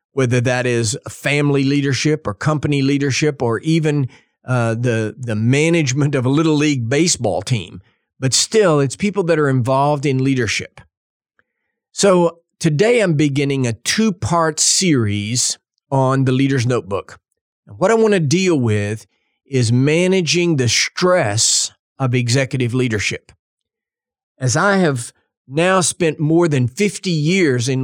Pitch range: 125-165 Hz